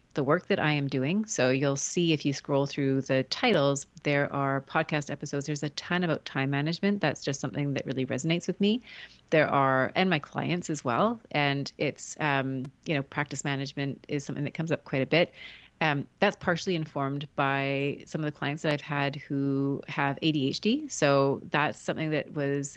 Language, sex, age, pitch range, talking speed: English, female, 30-49, 140-165 Hz, 200 wpm